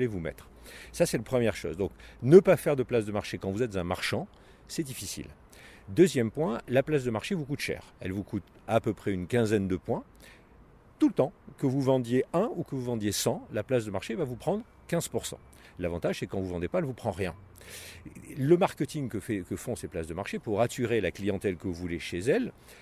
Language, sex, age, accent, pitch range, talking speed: French, male, 50-69, French, 95-130 Hz, 235 wpm